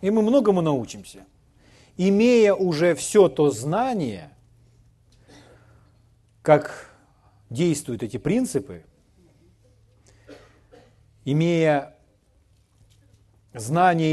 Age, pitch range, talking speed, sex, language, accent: 40-59, 105-170 Hz, 65 wpm, male, Ukrainian, native